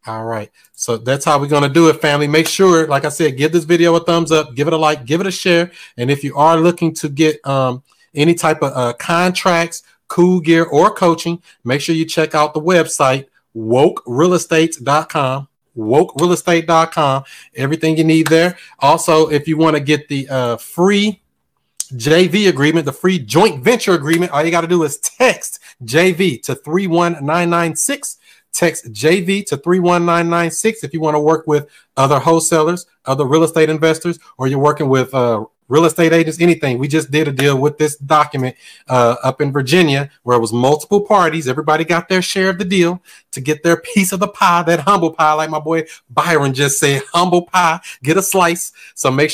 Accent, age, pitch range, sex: American, 30-49, 140-170 Hz, male